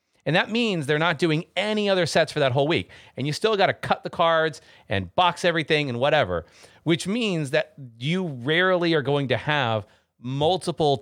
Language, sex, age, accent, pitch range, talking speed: English, male, 30-49, American, 115-160 Hz, 195 wpm